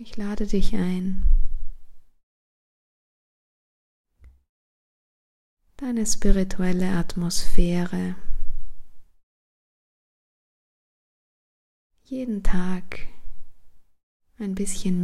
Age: 20-39